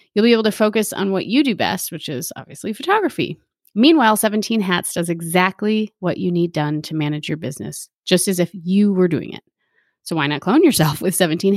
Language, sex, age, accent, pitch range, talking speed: English, female, 30-49, American, 175-220 Hz, 215 wpm